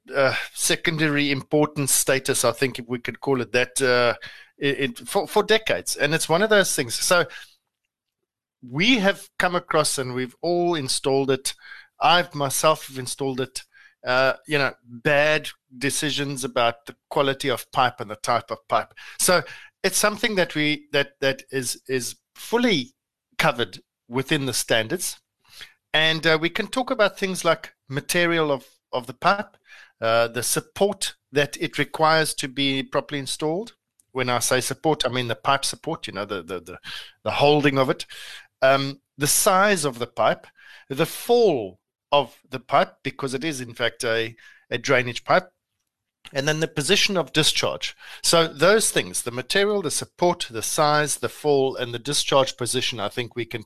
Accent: South African